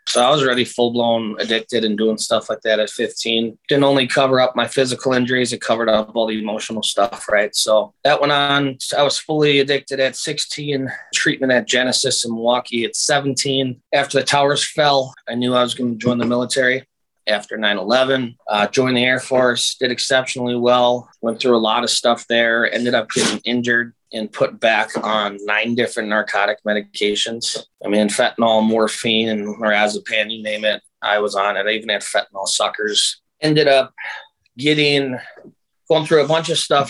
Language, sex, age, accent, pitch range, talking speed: English, male, 20-39, American, 110-135 Hz, 185 wpm